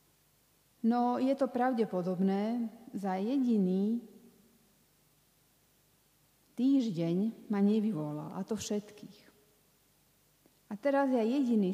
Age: 40-59